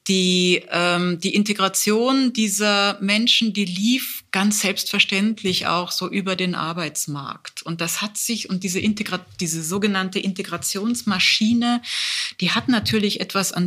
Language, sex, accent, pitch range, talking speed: German, female, German, 175-215 Hz, 130 wpm